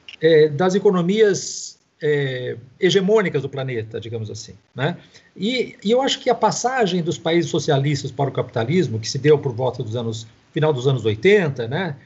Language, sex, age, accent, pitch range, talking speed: Portuguese, male, 50-69, Brazilian, 135-195 Hz, 165 wpm